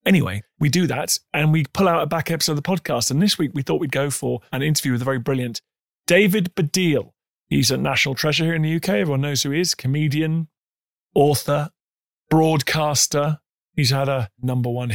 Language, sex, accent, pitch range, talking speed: English, male, British, 115-155 Hz, 205 wpm